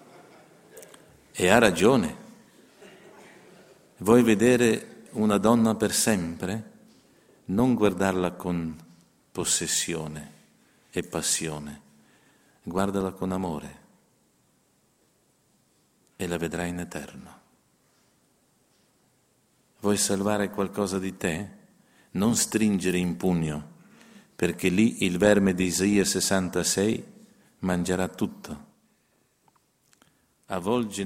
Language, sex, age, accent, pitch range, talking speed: Italian, male, 50-69, native, 90-100 Hz, 80 wpm